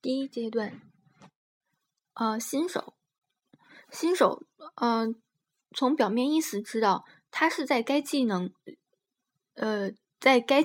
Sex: female